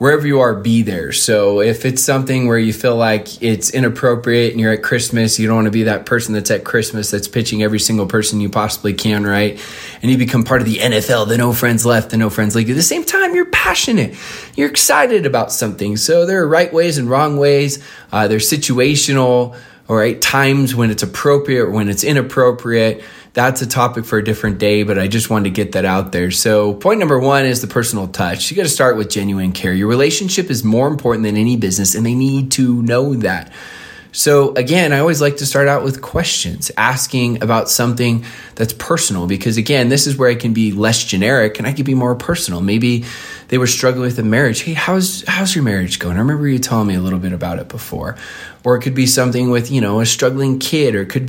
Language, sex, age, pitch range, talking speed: English, male, 20-39, 110-135 Hz, 230 wpm